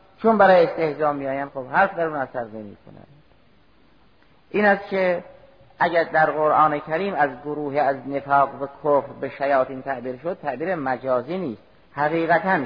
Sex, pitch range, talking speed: male, 135-175 Hz, 150 wpm